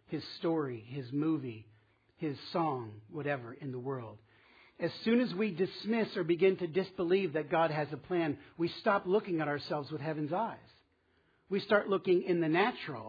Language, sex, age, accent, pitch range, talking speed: English, male, 50-69, American, 130-175 Hz, 175 wpm